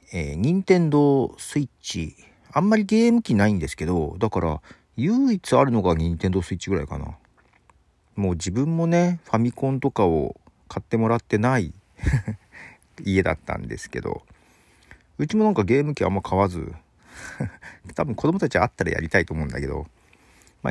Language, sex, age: Japanese, male, 40-59